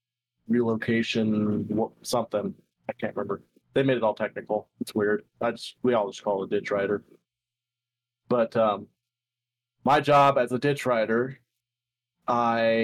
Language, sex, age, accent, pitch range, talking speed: English, male, 30-49, American, 115-130 Hz, 145 wpm